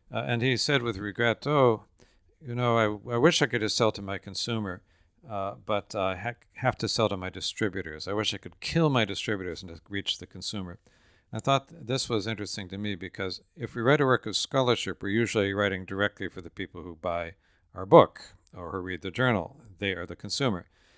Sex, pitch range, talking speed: male, 95-115 Hz, 225 wpm